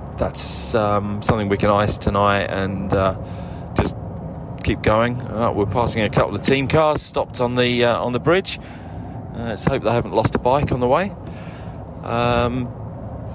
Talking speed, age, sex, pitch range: 175 wpm, 20-39, male, 100-120 Hz